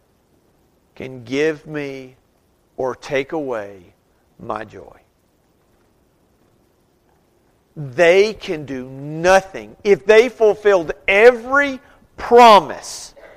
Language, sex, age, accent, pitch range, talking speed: English, male, 40-59, American, 150-220 Hz, 75 wpm